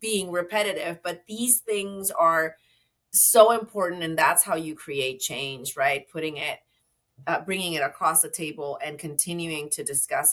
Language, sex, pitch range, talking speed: English, female, 160-205 Hz, 155 wpm